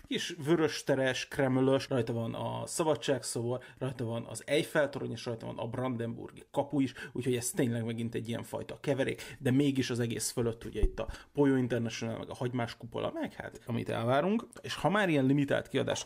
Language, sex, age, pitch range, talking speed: Hungarian, male, 30-49, 120-145 Hz, 190 wpm